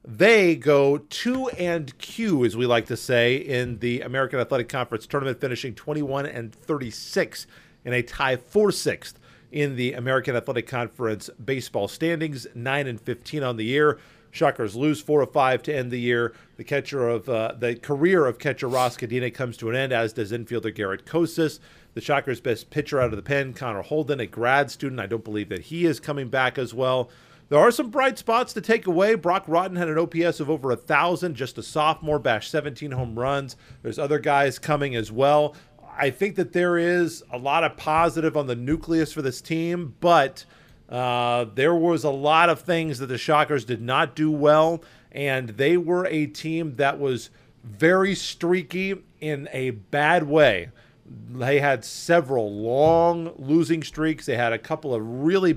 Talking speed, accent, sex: 175 wpm, American, male